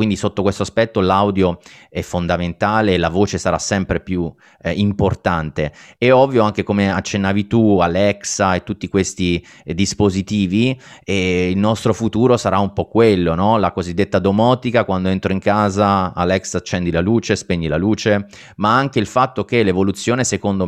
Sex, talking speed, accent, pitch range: male, 155 wpm, native, 90-110 Hz